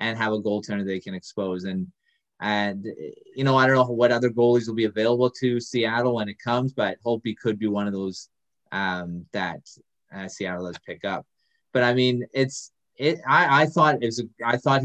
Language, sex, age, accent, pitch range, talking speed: English, male, 20-39, American, 105-125 Hz, 215 wpm